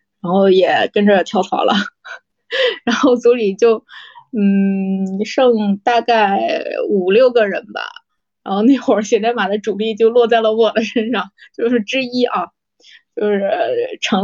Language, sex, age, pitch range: Chinese, female, 20-39, 205-255 Hz